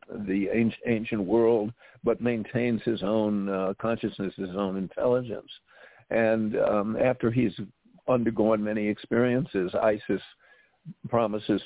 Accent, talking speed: American, 110 wpm